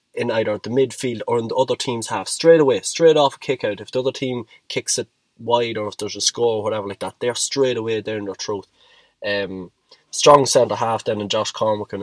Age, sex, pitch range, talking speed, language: 20-39, male, 100-125 Hz, 230 wpm, English